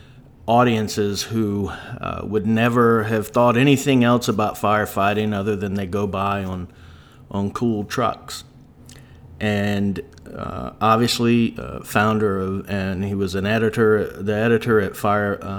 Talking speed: 135 wpm